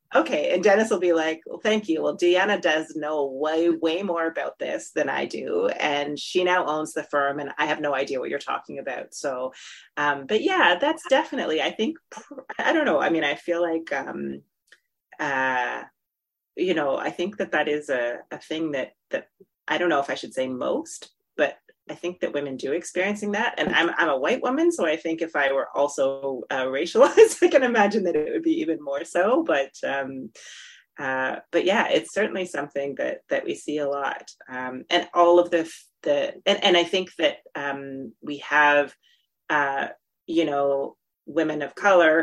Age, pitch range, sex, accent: 30-49, 140-180 Hz, female, American